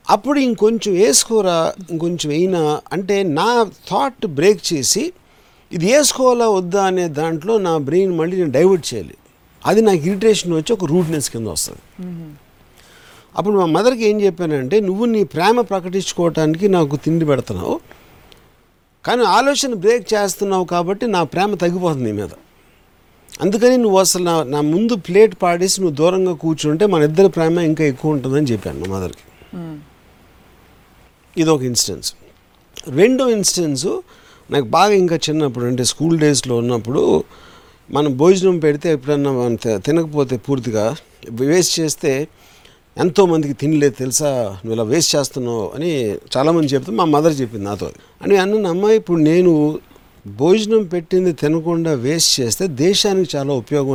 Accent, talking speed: native, 135 wpm